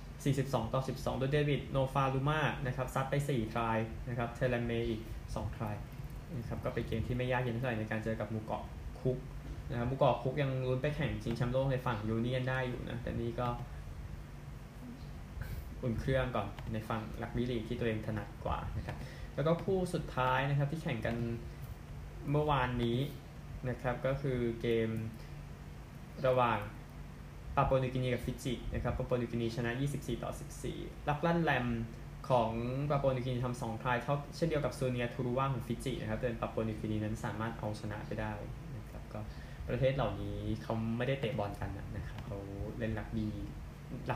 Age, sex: 10-29, male